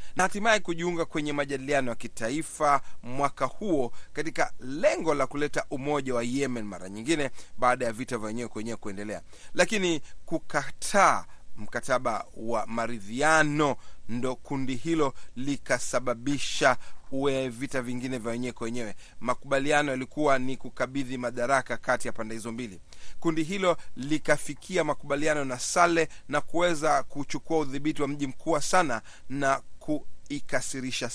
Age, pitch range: 30-49, 125-150 Hz